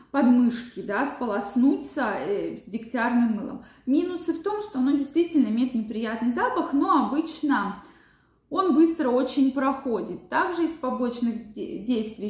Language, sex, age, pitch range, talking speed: Russian, female, 20-39, 215-275 Hz, 125 wpm